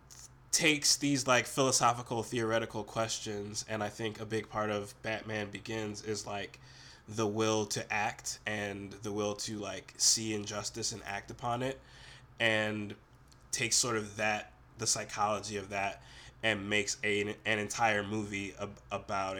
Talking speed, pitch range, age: 150 wpm, 105-115 Hz, 20-39